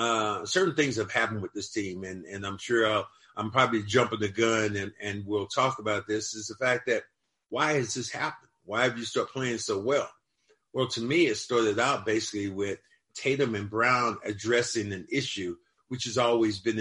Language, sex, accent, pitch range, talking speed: English, male, American, 110-130 Hz, 200 wpm